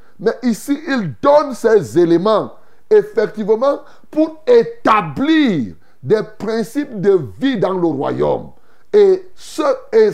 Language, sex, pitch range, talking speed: French, male, 175-245 Hz, 110 wpm